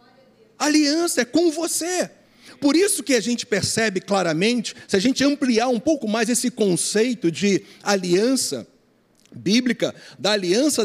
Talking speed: 140 wpm